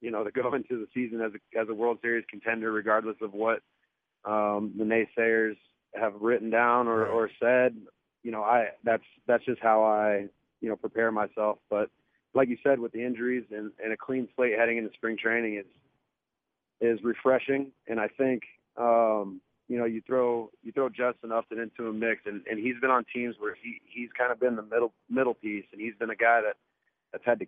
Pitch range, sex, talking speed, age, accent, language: 105-120 Hz, male, 210 wpm, 30-49, American, English